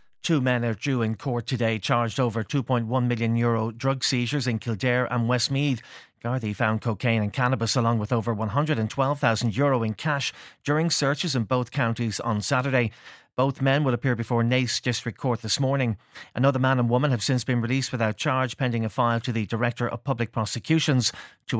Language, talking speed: English, 185 wpm